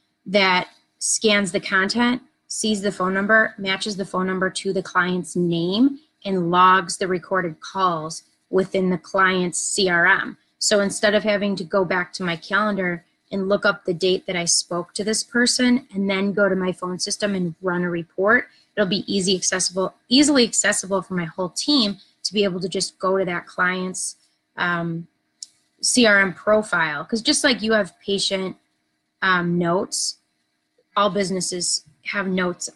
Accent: American